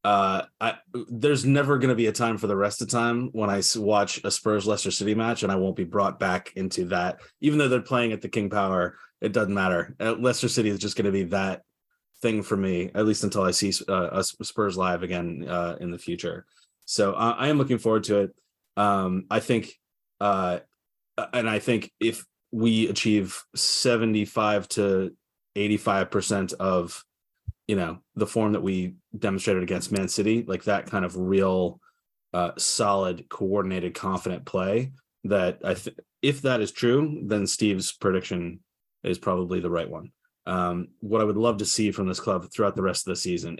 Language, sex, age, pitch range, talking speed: English, male, 30-49, 95-115 Hz, 190 wpm